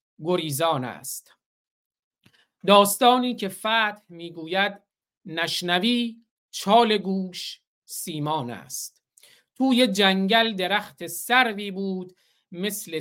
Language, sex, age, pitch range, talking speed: Persian, male, 50-69, 170-225 Hz, 80 wpm